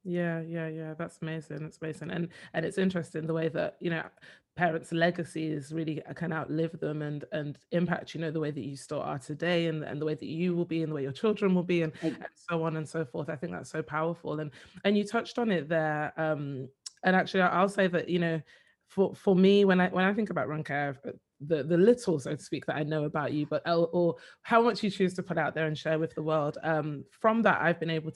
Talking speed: 255 wpm